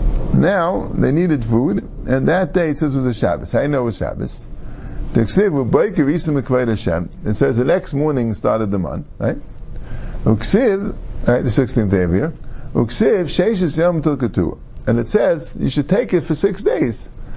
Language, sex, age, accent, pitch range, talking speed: English, male, 50-69, American, 115-160 Hz, 150 wpm